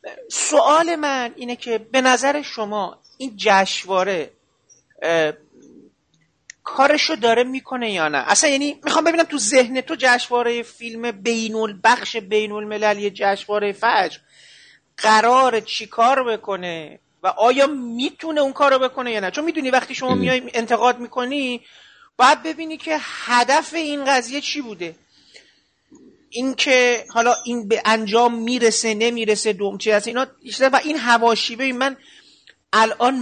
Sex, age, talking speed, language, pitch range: male, 40-59, 130 wpm, Persian, 210-265 Hz